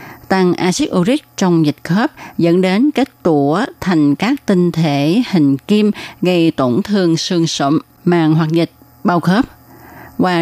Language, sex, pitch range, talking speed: Vietnamese, female, 155-195 Hz, 155 wpm